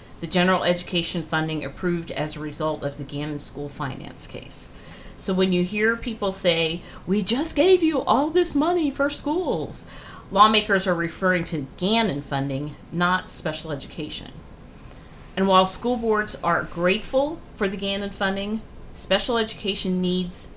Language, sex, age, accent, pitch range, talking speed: English, female, 40-59, American, 150-200 Hz, 150 wpm